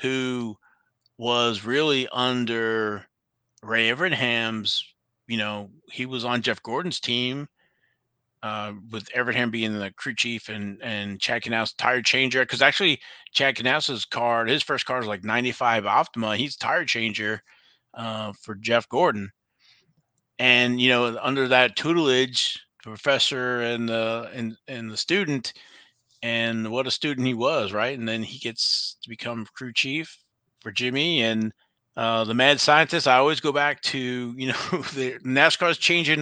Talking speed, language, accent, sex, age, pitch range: 155 wpm, English, American, male, 30-49, 115-130 Hz